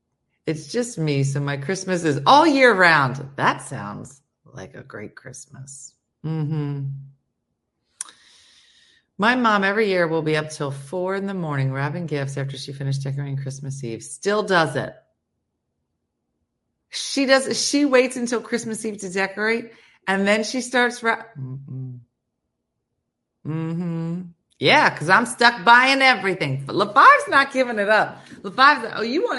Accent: American